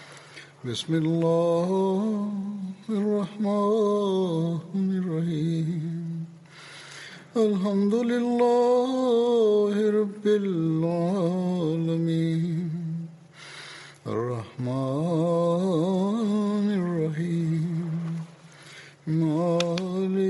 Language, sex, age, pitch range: Russian, male, 60-79, 155-195 Hz